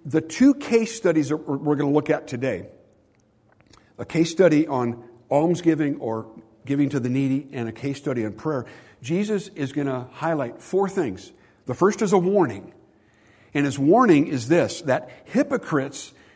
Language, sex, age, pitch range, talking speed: English, male, 60-79, 115-165 Hz, 170 wpm